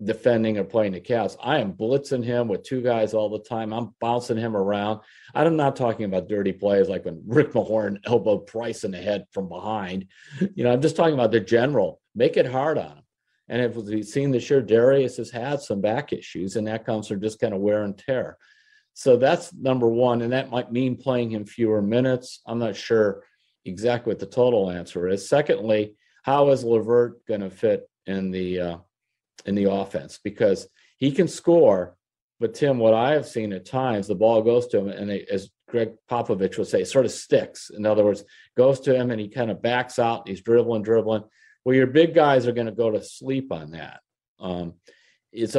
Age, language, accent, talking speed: 50-69, English, American, 210 wpm